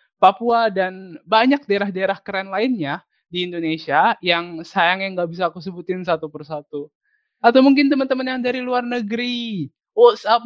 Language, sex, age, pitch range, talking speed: Indonesian, male, 20-39, 175-230 Hz, 145 wpm